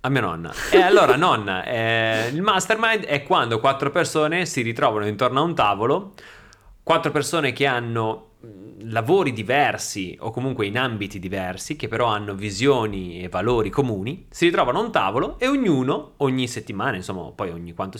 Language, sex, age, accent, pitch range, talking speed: Italian, male, 30-49, native, 100-150 Hz, 165 wpm